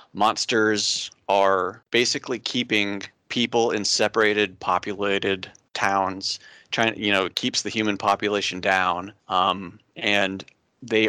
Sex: male